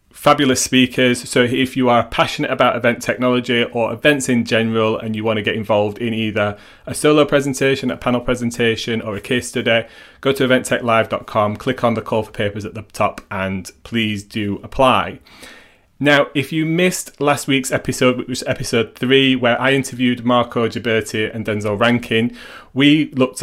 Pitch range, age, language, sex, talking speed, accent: 110-125 Hz, 30-49, English, male, 175 wpm, British